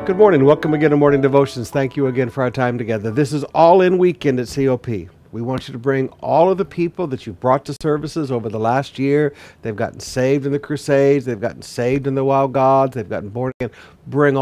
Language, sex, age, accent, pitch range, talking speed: English, male, 60-79, American, 120-155 Hz, 235 wpm